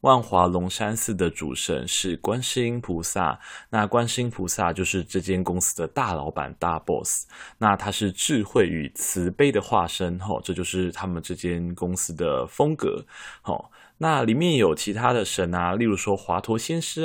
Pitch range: 90-115 Hz